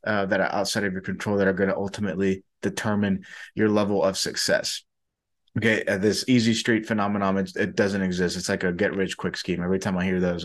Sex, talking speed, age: male, 220 wpm, 20-39